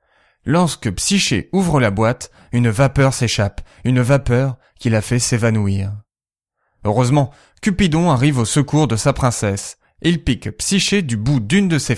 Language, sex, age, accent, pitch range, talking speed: French, male, 20-39, French, 110-145 Hz, 150 wpm